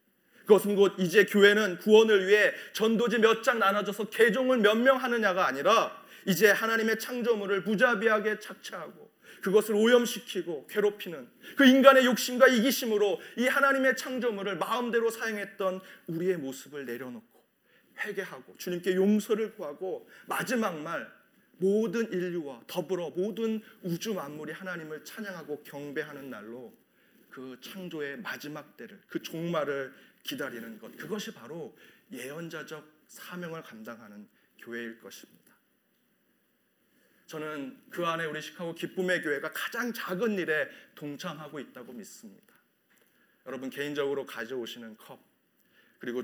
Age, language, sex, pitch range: 30-49, Korean, male, 145-220 Hz